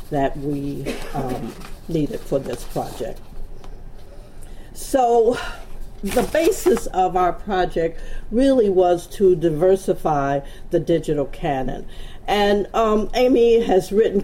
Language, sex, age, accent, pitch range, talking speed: English, female, 50-69, American, 165-205 Hz, 105 wpm